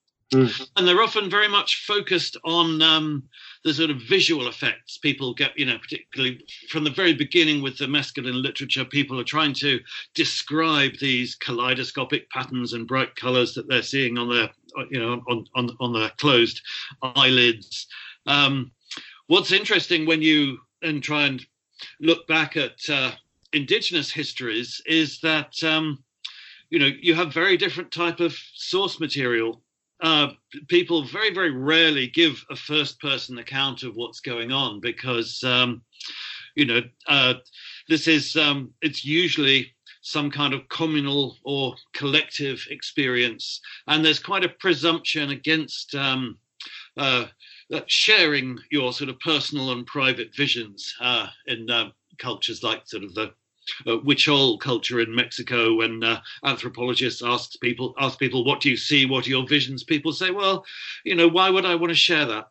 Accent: British